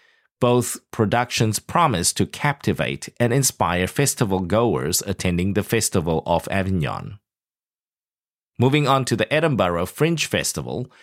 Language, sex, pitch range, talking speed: English, male, 95-135 Hz, 110 wpm